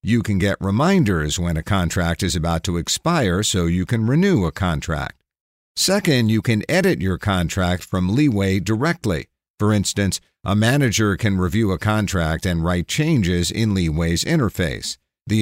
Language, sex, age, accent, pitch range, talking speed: English, male, 50-69, American, 90-115 Hz, 160 wpm